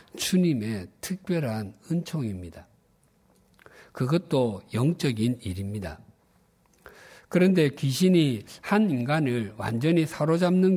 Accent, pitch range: native, 110-160 Hz